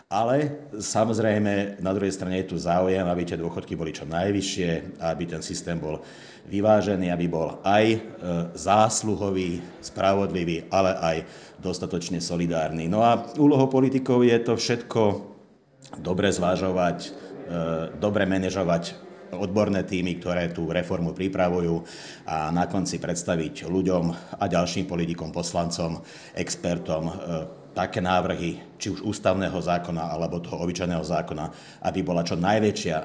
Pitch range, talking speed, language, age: 85-105 Hz, 130 wpm, Slovak, 50-69